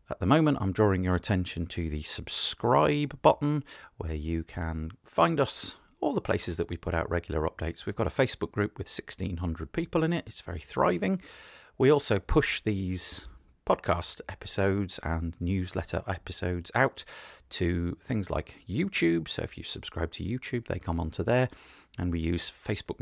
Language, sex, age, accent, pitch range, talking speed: English, male, 40-59, British, 85-110 Hz, 170 wpm